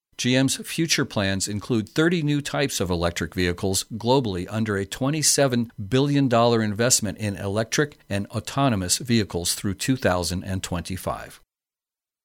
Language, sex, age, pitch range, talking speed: English, male, 50-69, 100-125 Hz, 115 wpm